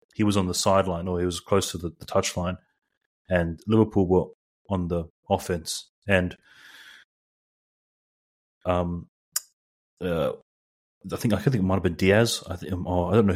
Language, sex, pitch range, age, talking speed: English, male, 90-100 Hz, 30-49, 165 wpm